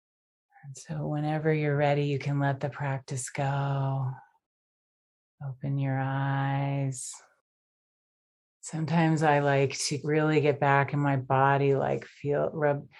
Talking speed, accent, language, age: 120 wpm, American, English, 30-49